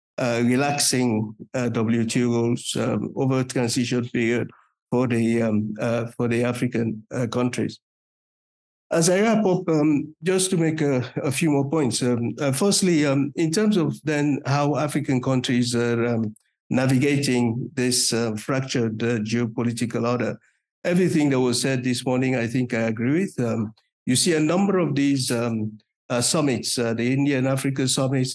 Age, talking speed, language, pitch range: 60-79, 150 wpm, English, 120-140 Hz